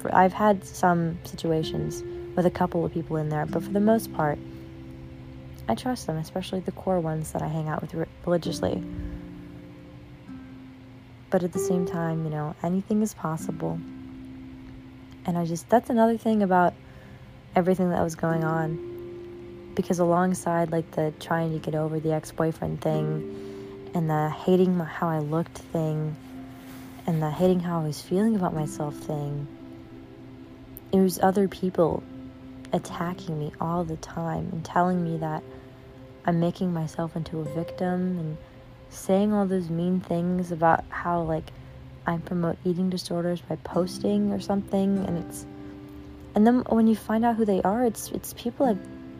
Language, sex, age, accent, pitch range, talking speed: English, female, 20-39, American, 130-185 Hz, 160 wpm